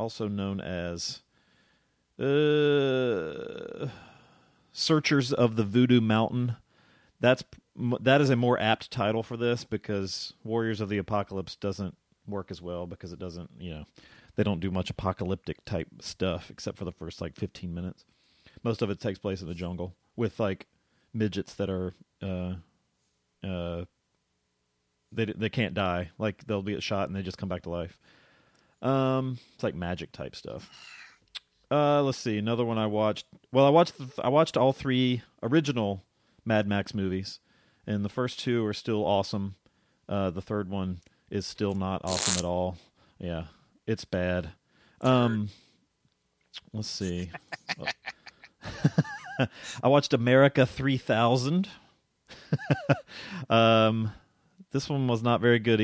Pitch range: 95-125 Hz